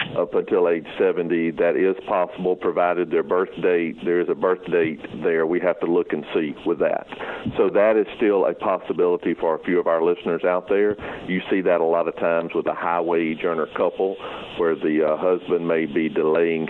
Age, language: 50-69, English